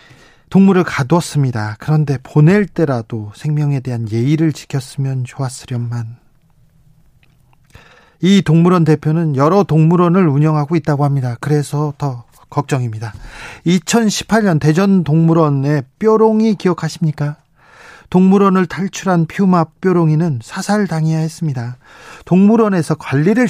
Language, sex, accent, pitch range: Korean, male, native, 130-170 Hz